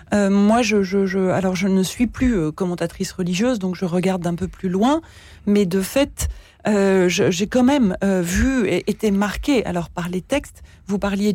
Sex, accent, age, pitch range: female, French, 40-59, 185-220 Hz